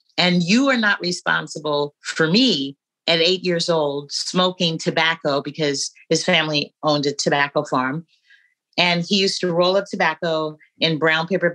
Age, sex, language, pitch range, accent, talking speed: 40-59, female, English, 155-210 Hz, American, 155 wpm